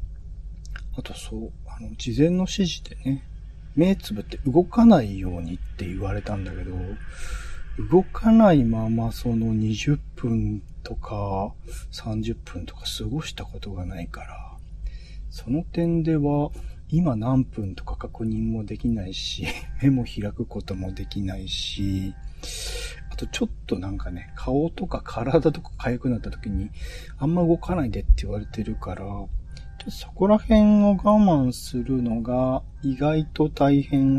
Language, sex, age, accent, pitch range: Japanese, male, 40-59, native, 90-135 Hz